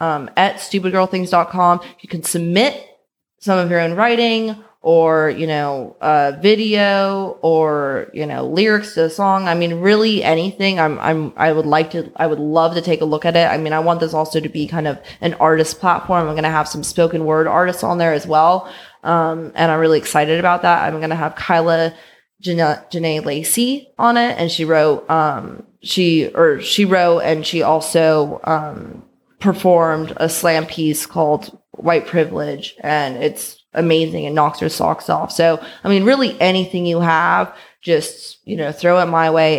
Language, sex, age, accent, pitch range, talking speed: English, female, 20-39, American, 155-185 Hz, 190 wpm